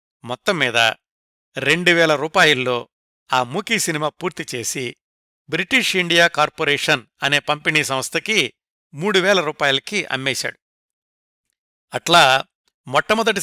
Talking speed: 100 wpm